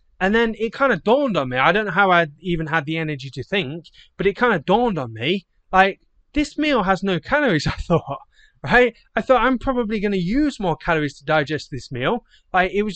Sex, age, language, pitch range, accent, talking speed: male, 20-39, English, 155-200 Hz, British, 235 wpm